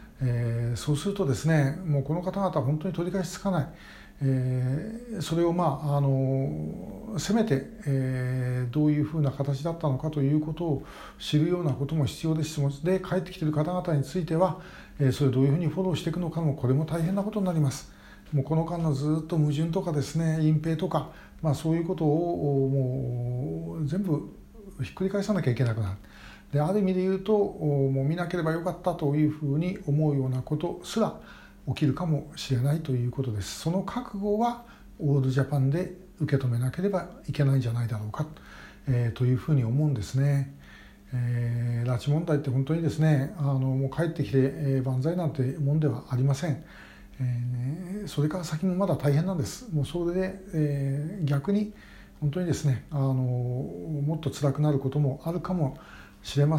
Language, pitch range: Japanese, 135-170 Hz